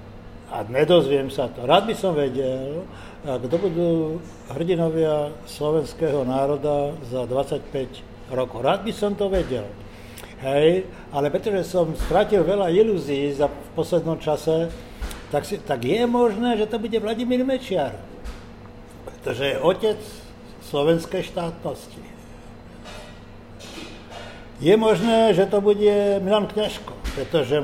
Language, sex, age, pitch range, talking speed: Slovak, male, 60-79, 135-185 Hz, 115 wpm